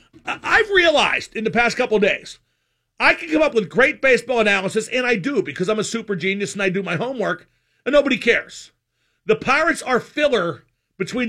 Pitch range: 185-270 Hz